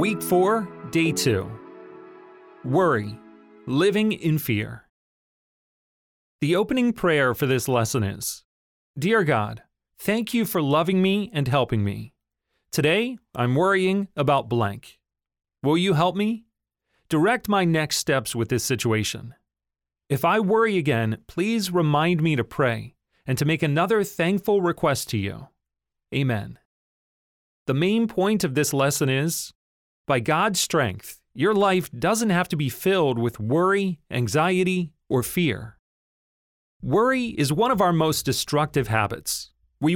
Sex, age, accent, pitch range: male, 30-49, American, 120-185 Hz